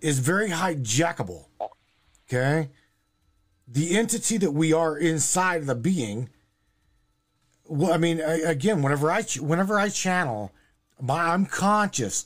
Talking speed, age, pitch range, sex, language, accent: 125 wpm, 40-59, 120-165 Hz, male, English, American